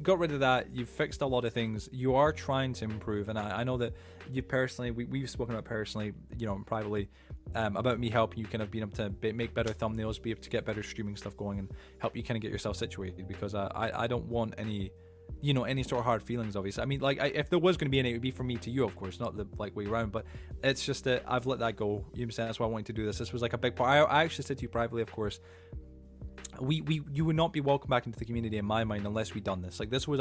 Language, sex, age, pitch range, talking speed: English, male, 20-39, 100-125 Hz, 300 wpm